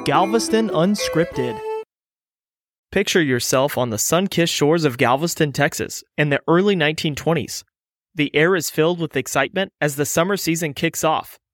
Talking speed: 140 wpm